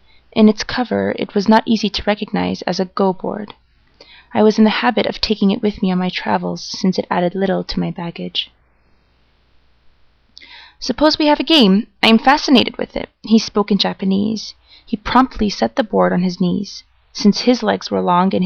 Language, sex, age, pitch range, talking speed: English, female, 20-39, 180-225 Hz, 195 wpm